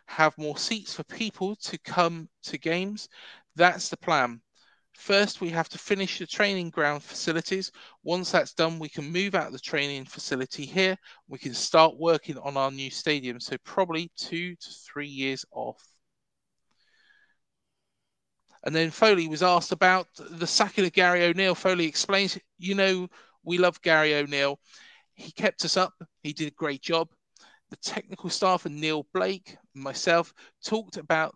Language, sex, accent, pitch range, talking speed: English, male, British, 145-185 Hz, 165 wpm